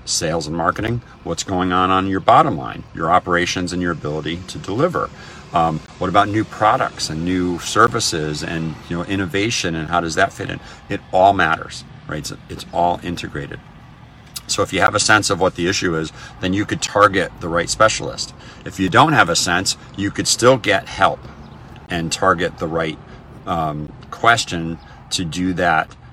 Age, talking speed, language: 50-69, 185 wpm, English